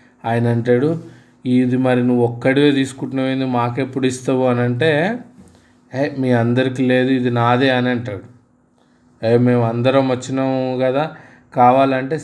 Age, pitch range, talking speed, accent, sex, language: 20-39, 125-140 Hz, 115 wpm, native, male, Telugu